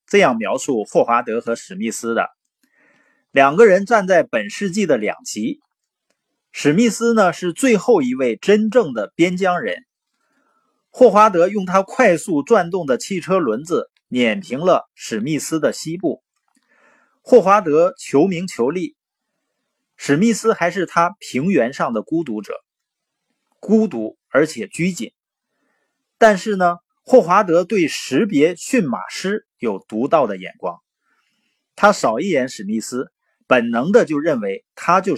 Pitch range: 175-250 Hz